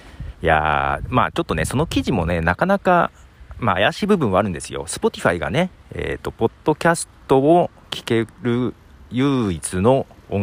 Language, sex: Japanese, male